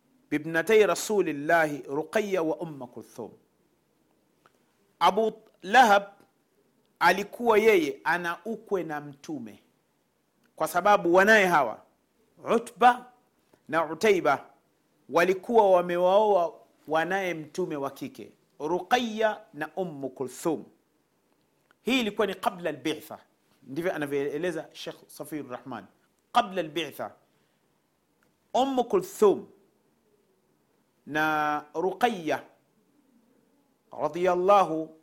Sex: male